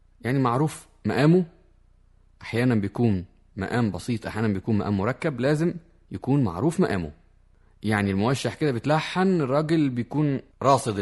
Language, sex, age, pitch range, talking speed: Arabic, male, 30-49, 95-135 Hz, 120 wpm